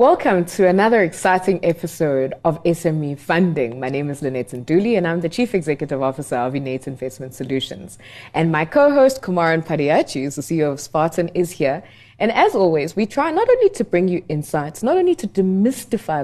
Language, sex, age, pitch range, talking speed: English, female, 20-39, 160-225 Hz, 185 wpm